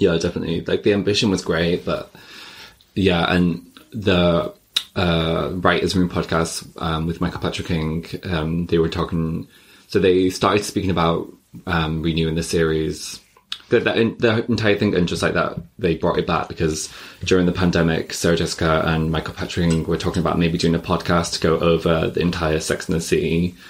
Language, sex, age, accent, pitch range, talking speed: English, male, 20-39, British, 80-90 Hz, 180 wpm